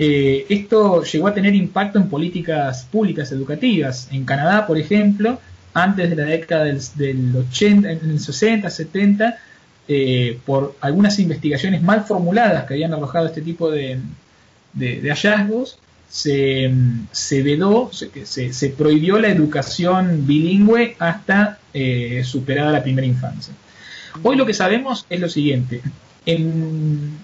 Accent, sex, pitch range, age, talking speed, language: Argentinian, male, 140-200 Hz, 20-39, 140 wpm, Spanish